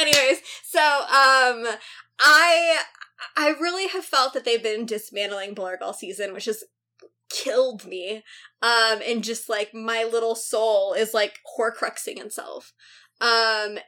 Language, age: English, 20-39